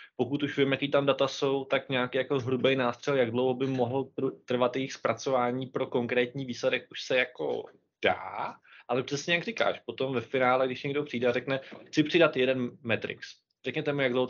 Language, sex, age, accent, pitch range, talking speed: Czech, male, 20-39, native, 125-150 Hz, 195 wpm